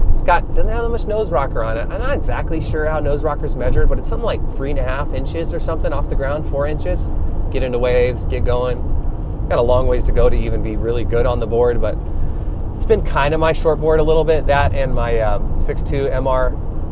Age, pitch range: 20-39, 90-130 Hz